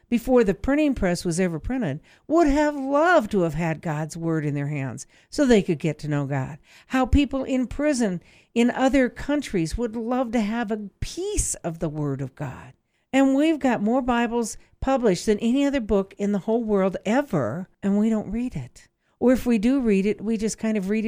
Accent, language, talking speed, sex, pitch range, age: American, English, 210 wpm, female, 160-245 Hz, 60-79